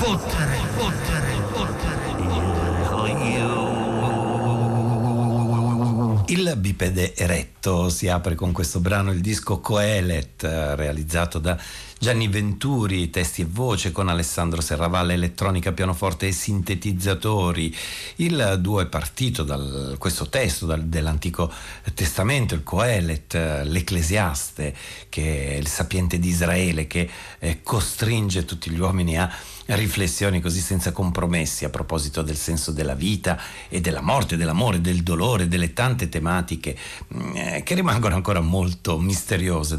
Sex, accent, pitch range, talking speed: male, native, 85-100 Hz, 120 wpm